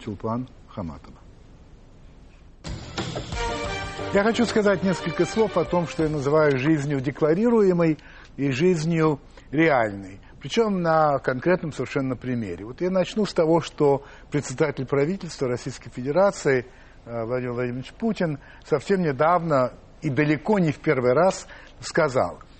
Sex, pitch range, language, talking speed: male, 130-180 Hz, Russian, 115 wpm